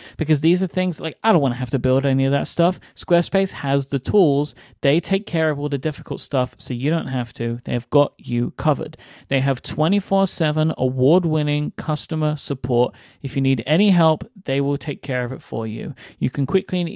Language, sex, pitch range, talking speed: English, male, 130-170 Hz, 220 wpm